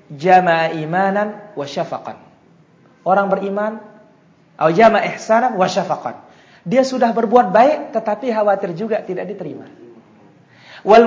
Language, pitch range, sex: Indonesian, 175-245 Hz, male